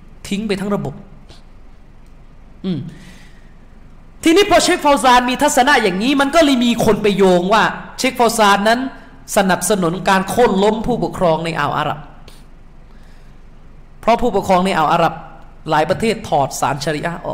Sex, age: male, 20-39